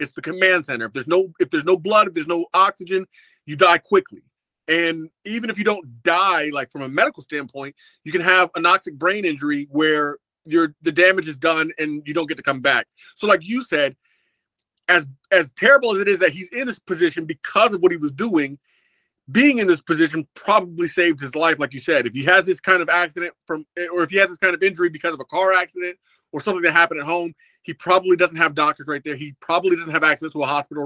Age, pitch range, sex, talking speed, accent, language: 30-49, 160-205 Hz, male, 235 wpm, American, English